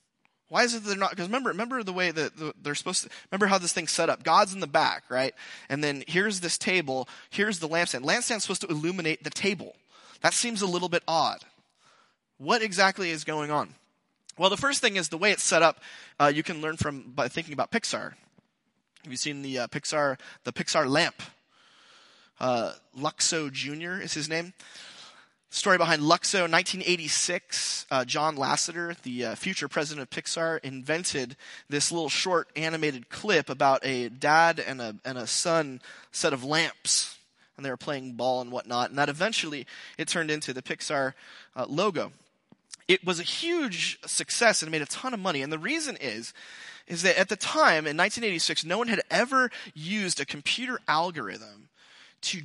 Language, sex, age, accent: English, male, 30-49, American